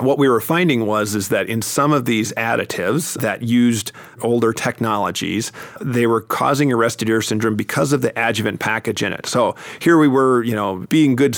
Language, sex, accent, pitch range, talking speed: English, male, American, 110-125 Hz, 195 wpm